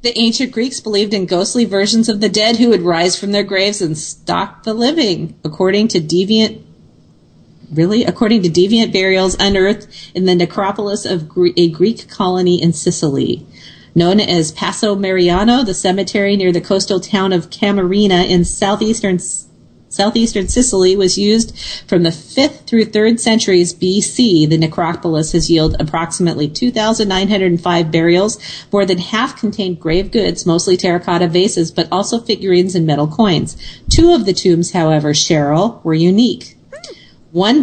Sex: female